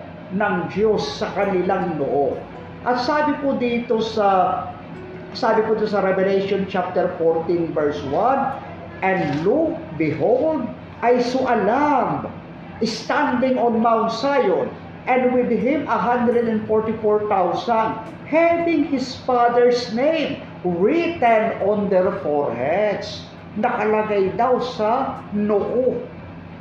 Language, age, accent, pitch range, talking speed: Filipino, 50-69, native, 175-235 Hz, 100 wpm